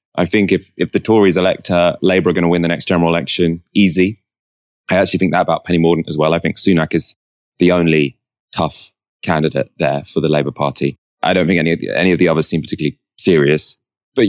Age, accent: 20-39, British